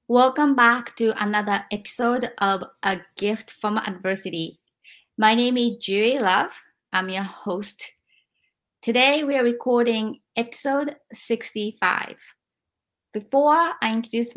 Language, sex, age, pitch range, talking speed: English, female, 20-39, 200-240 Hz, 115 wpm